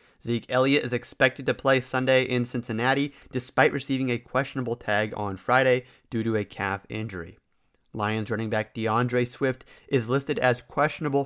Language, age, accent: English, 30-49, American